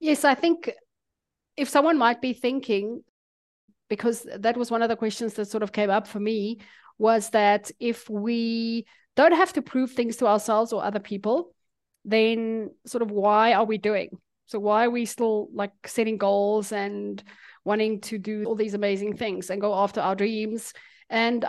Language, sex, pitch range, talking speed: English, female, 205-240 Hz, 180 wpm